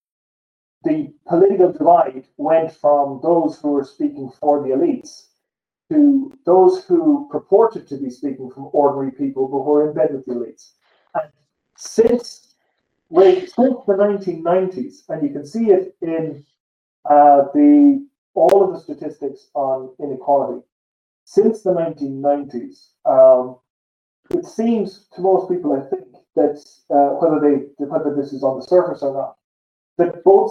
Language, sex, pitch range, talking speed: English, male, 135-195 Hz, 145 wpm